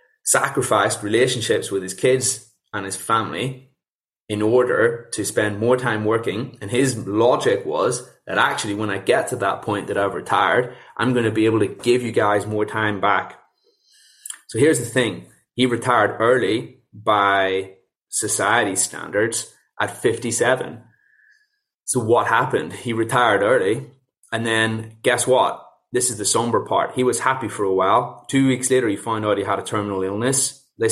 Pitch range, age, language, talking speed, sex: 105-130 Hz, 20-39, English, 170 wpm, male